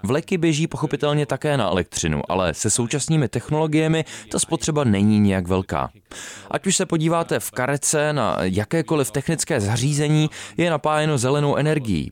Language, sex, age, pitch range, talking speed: Czech, male, 20-39, 115-155 Hz, 145 wpm